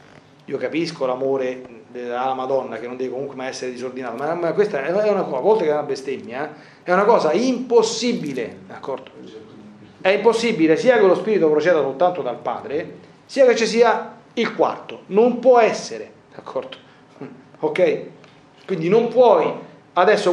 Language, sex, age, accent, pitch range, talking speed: Italian, male, 40-59, native, 145-220 Hz, 155 wpm